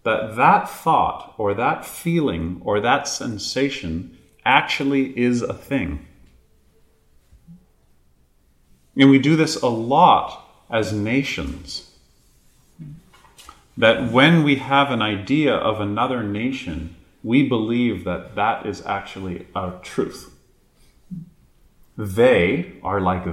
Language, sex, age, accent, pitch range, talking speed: English, male, 40-59, American, 85-135 Hz, 105 wpm